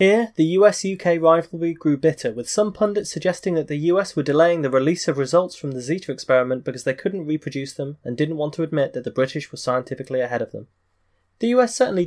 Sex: male